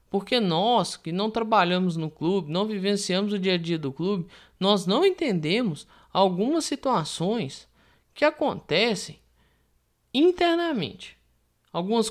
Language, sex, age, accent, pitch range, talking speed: Portuguese, male, 20-39, Brazilian, 170-245 Hz, 120 wpm